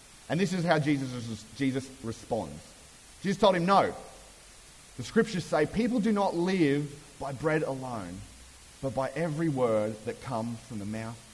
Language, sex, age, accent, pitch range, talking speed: English, male, 30-49, Australian, 115-170 Hz, 155 wpm